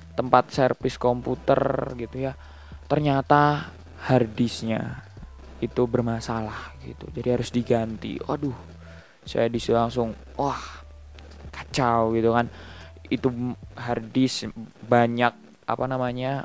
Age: 20-39